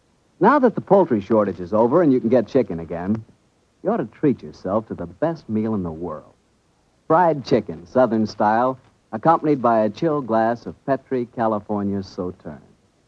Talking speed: 175 wpm